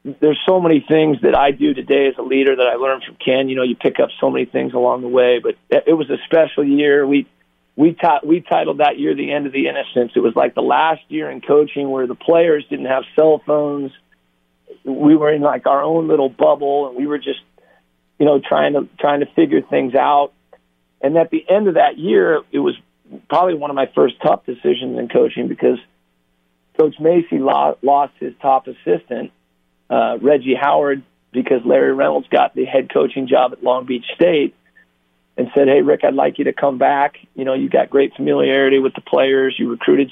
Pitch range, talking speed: 125-150 Hz, 210 wpm